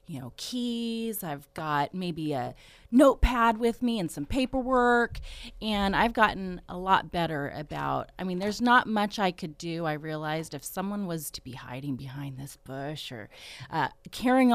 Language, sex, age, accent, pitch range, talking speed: English, female, 30-49, American, 155-220 Hz, 175 wpm